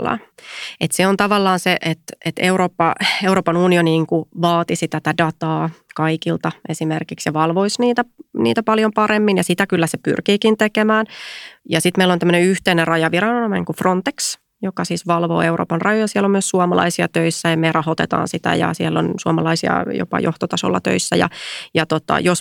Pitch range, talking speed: 160-190 Hz, 160 wpm